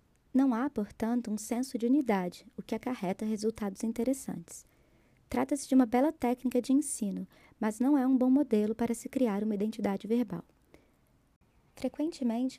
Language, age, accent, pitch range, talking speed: Portuguese, 20-39, Brazilian, 205-250 Hz, 155 wpm